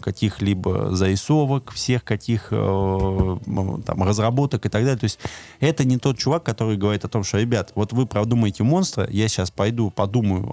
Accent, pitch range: native, 95-120 Hz